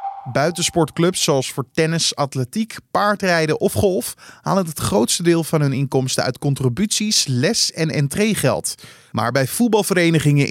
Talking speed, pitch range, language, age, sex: 135 wpm, 120-170 Hz, Dutch, 20-39, male